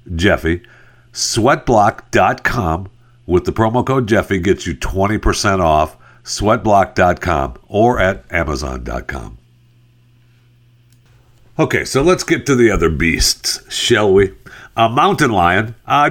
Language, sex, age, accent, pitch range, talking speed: English, male, 60-79, American, 100-145 Hz, 110 wpm